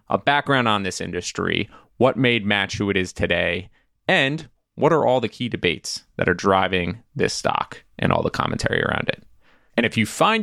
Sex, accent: male, American